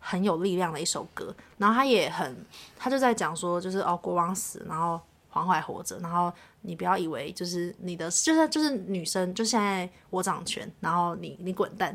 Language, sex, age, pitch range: Chinese, female, 20-39, 175-215 Hz